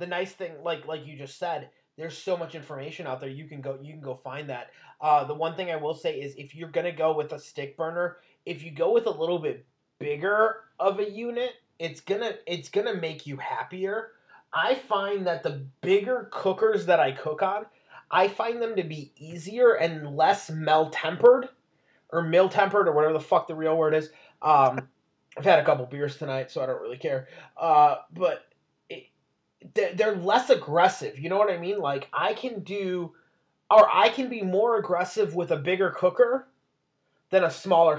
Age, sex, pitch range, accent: 30-49, male, 150-195 Hz, American